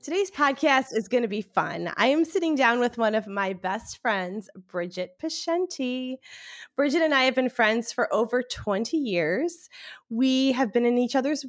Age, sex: 20-39, female